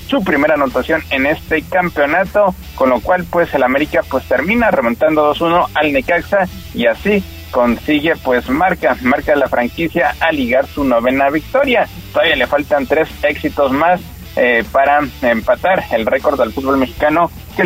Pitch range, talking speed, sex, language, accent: 145-200 Hz, 155 wpm, male, Spanish, Mexican